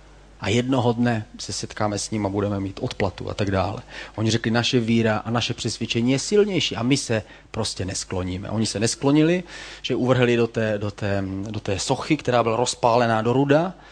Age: 30-49